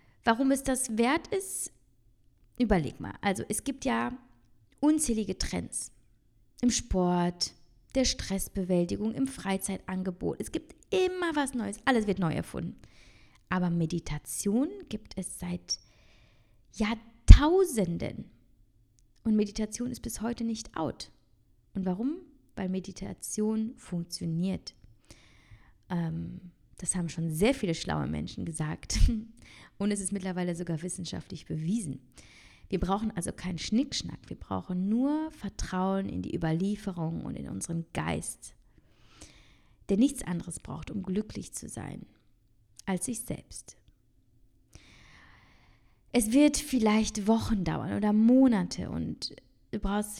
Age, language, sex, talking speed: 20-39, German, female, 120 wpm